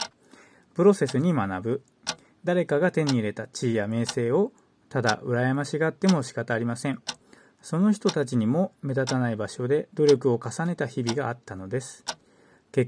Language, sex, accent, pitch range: Japanese, male, native, 120-155 Hz